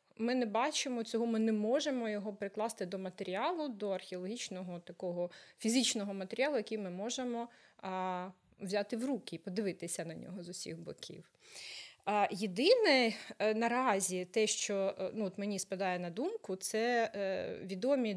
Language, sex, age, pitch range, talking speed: Ukrainian, female, 20-39, 185-235 Hz, 150 wpm